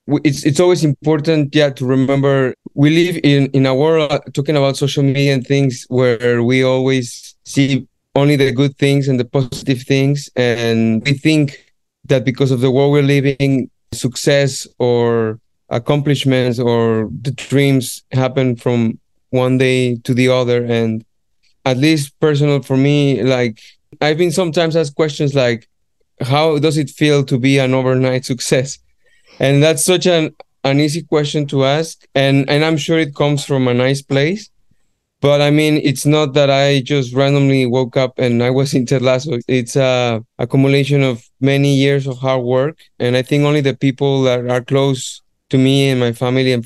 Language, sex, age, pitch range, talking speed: English, male, 30-49, 130-145 Hz, 175 wpm